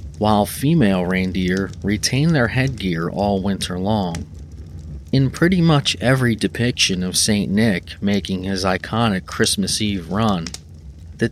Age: 30-49